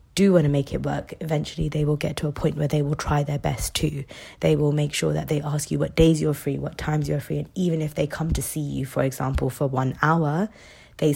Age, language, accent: 20-39, English, British